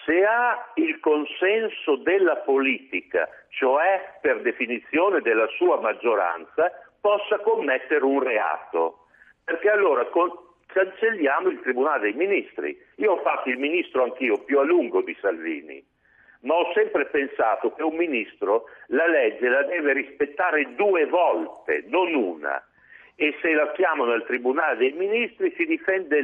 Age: 60-79